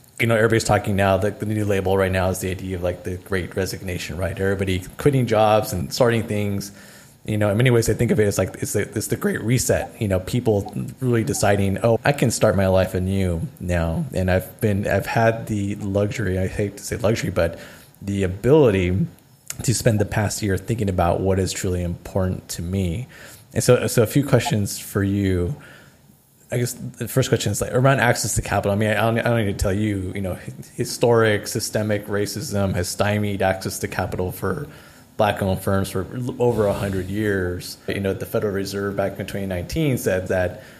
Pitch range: 95-115 Hz